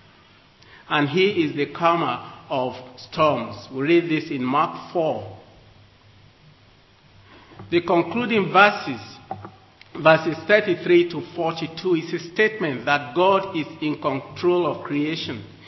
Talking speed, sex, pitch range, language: 115 wpm, male, 135-180 Hz, English